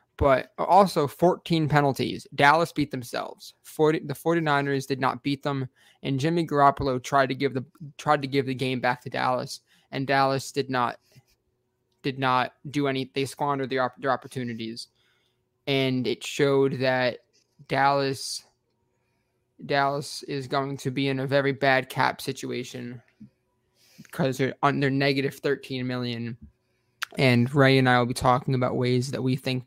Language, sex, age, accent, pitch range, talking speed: English, male, 20-39, American, 125-140 Hz, 155 wpm